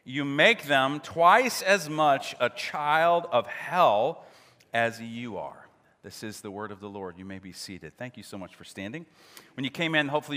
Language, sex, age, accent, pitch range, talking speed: English, male, 40-59, American, 115-155 Hz, 205 wpm